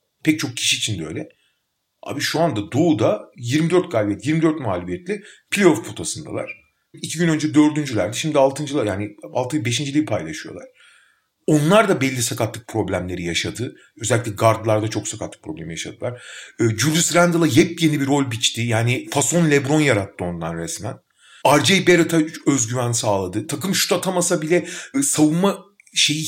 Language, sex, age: Turkish, male, 40-59